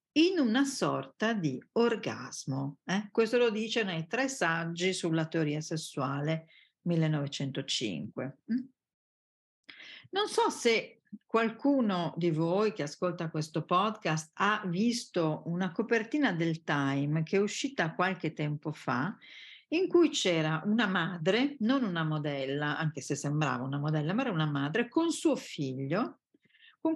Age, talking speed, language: 50-69, 130 wpm, Italian